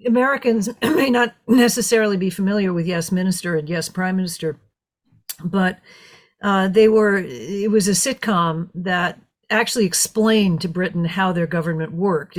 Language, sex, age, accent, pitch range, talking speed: English, female, 50-69, American, 170-215 Hz, 145 wpm